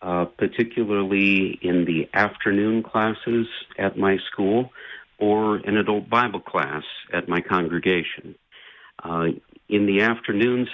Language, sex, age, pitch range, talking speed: English, male, 50-69, 95-115 Hz, 115 wpm